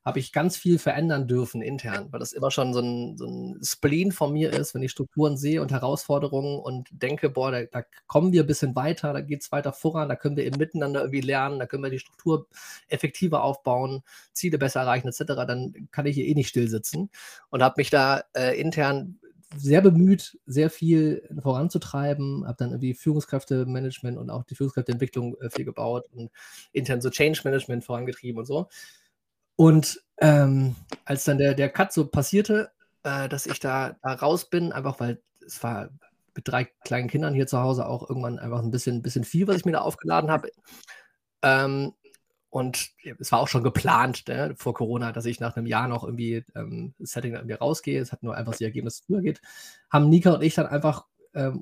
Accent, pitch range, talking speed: German, 125-160 Hz, 200 wpm